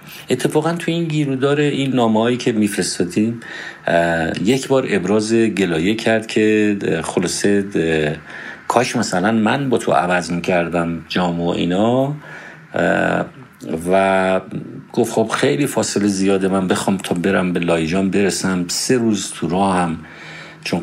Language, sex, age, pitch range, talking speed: Persian, male, 50-69, 90-115 Hz, 125 wpm